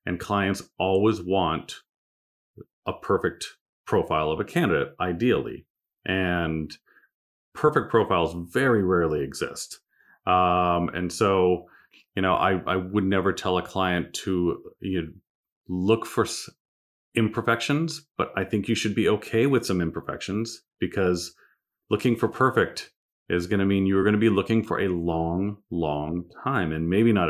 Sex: male